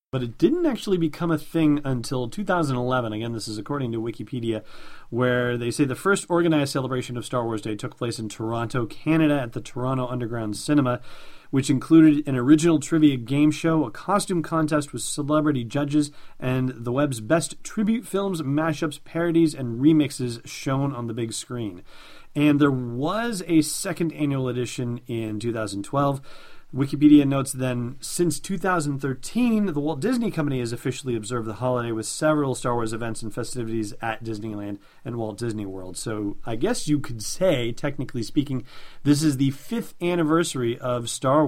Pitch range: 115-150 Hz